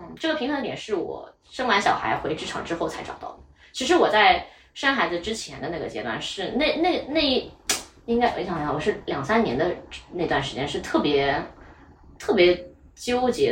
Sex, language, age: female, Chinese, 20-39